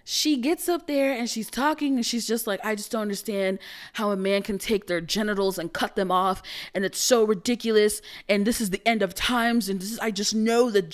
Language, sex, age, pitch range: English, female, 20-39, 175-265 Hz